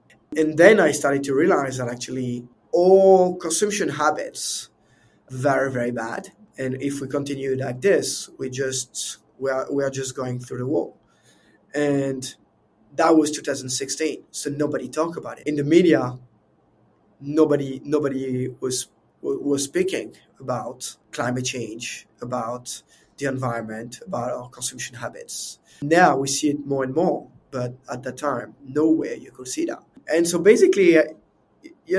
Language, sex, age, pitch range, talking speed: English, male, 20-39, 130-160 Hz, 145 wpm